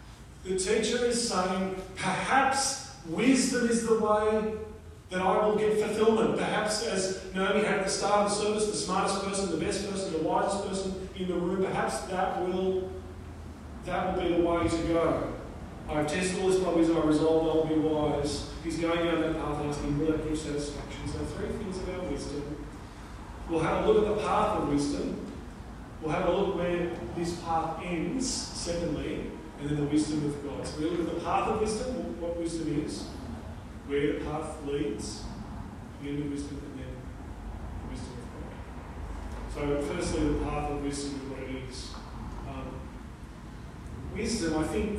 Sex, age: male, 30-49